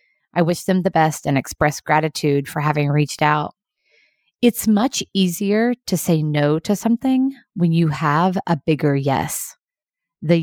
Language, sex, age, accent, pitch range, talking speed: English, female, 30-49, American, 155-215 Hz, 155 wpm